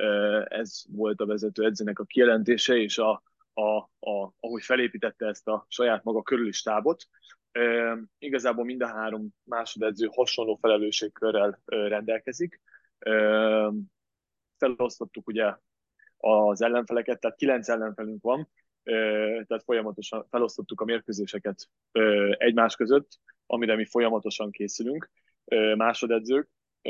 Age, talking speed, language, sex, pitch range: 20-39, 105 wpm, Hungarian, male, 105-120 Hz